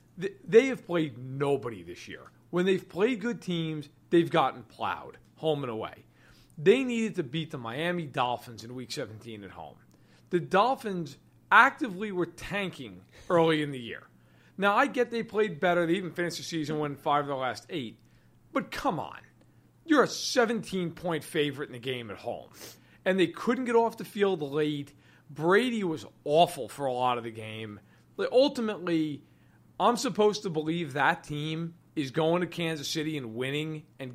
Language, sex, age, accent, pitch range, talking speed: English, male, 40-59, American, 140-195 Hz, 175 wpm